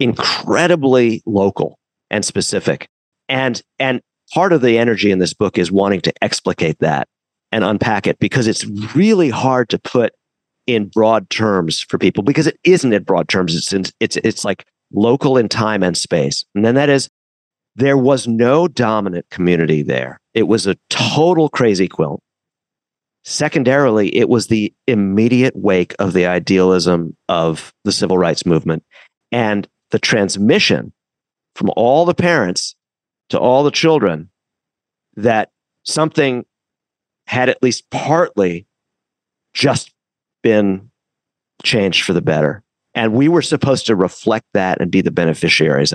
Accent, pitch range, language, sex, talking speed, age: American, 90-130 Hz, English, male, 145 wpm, 50-69